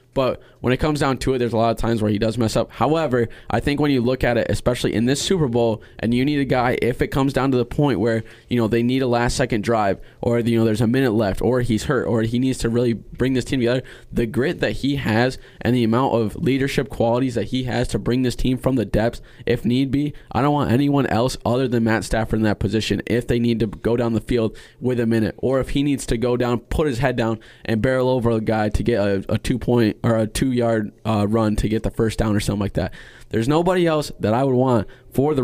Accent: American